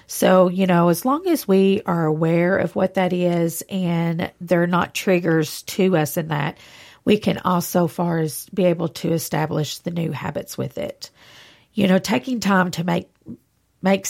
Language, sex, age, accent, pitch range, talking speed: English, female, 40-59, American, 165-195 Hz, 180 wpm